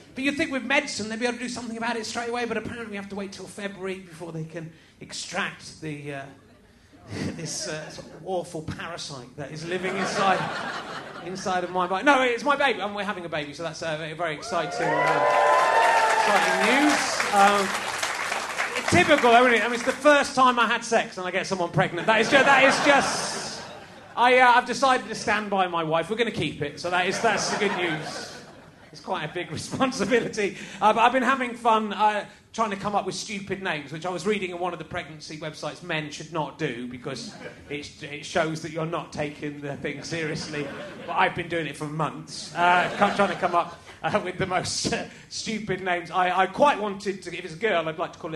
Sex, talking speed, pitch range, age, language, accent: male, 230 wpm, 160-220 Hz, 30-49, English, British